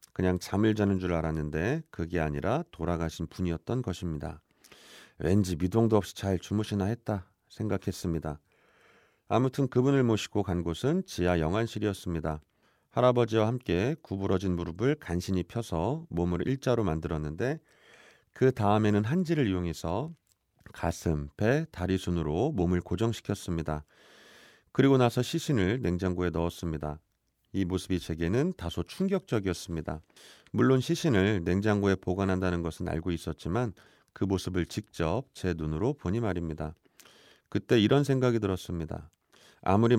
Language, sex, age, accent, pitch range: Korean, male, 40-59, native, 85-115 Hz